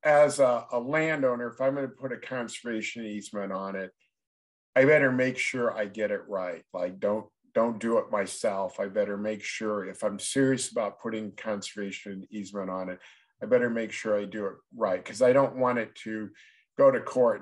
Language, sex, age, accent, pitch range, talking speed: English, male, 50-69, American, 100-120 Hz, 200 wpm